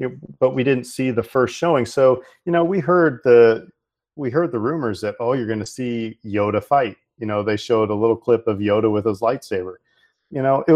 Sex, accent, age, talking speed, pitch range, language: male, American, 40-59, 225 wpm, 100-120 Hz, English